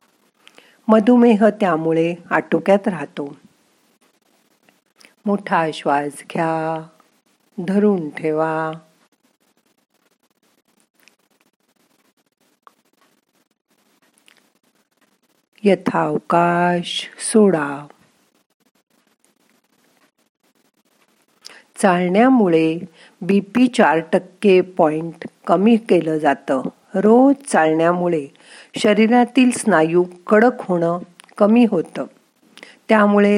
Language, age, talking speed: Marathi, 50-69, 40 wpm